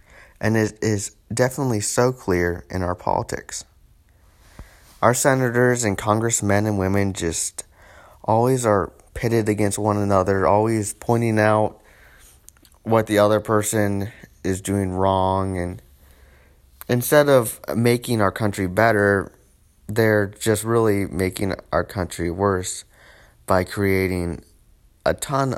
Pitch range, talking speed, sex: 90-110 Hz, 115 wpm, male